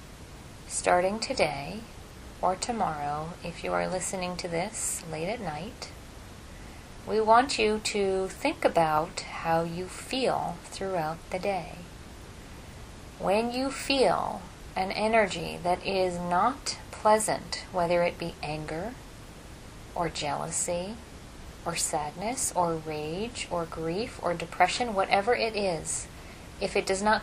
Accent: American